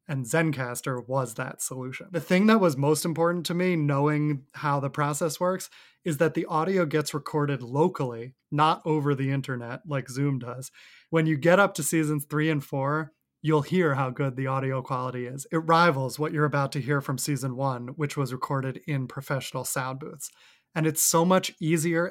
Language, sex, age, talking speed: English, male, 30-49, 195 wpm